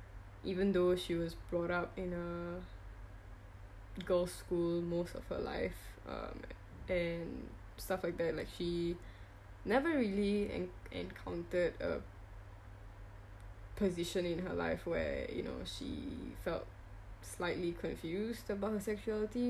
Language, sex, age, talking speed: English, female, 10-29, 125 wpm